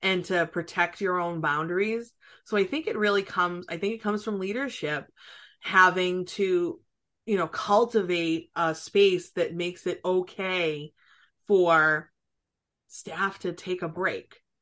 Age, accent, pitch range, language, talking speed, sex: 20-39, American, 175-215 Hz, English, 145 wpm, female